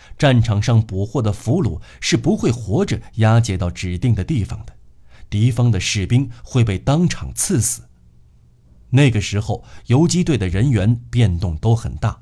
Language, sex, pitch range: Chinese, male, 100-130 Hz